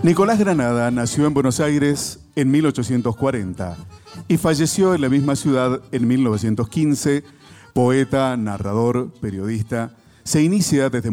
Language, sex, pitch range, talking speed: Spanish, male, 110-145 Hz, 120 wpm